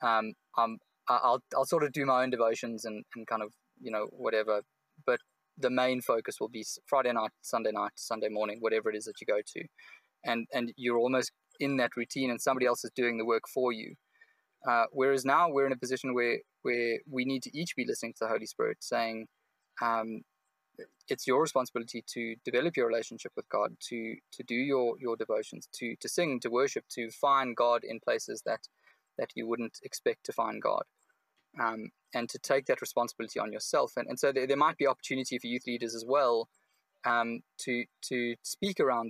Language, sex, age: English, male, 20-39